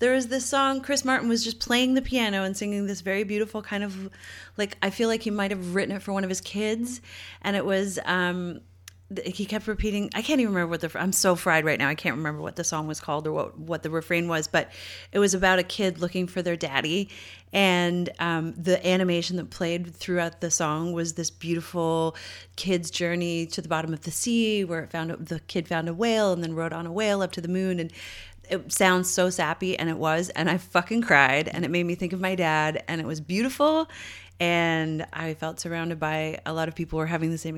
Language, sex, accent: English, female, American